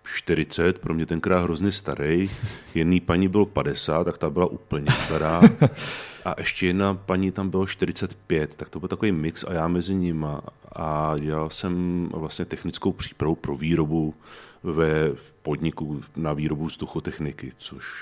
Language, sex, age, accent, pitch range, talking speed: Czech, male, 40-59, native, 80-95 Hz, 150 wpm